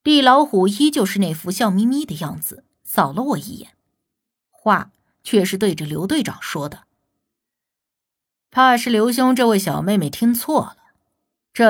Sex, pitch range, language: female, 200-295 Hz, Chinese